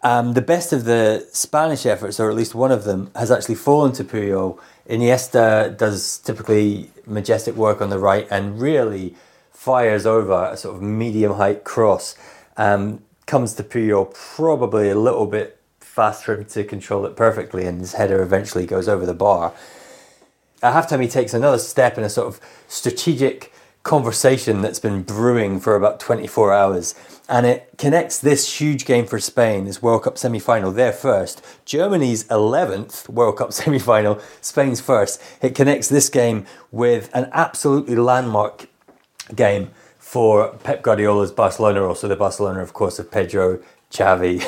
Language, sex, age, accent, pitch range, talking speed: English, male, 30-49, British, 100-130 Hz, 155 wpm